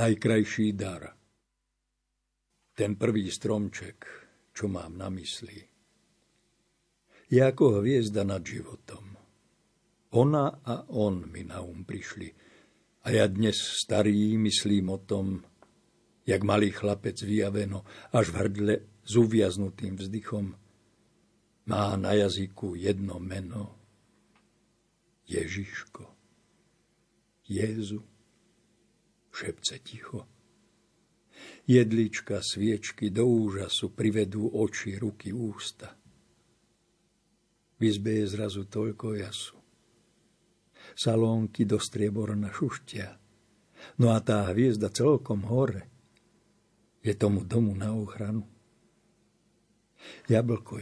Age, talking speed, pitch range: 60-79, 90 wpm, 100-110 Hz